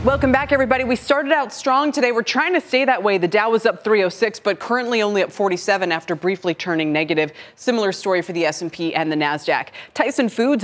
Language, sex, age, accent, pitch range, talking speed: English, female, 30-49, American, 175-245 Hz, 215 wpm